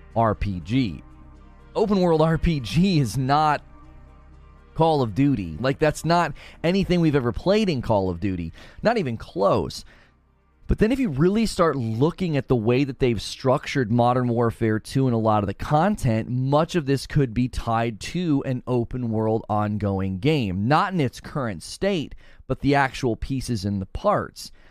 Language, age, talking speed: English, 30-49, 170 wpm